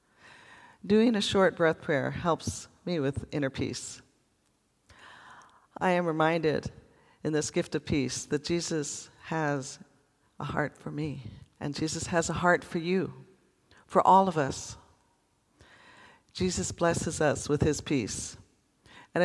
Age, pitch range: 50-69, 130-175 Hz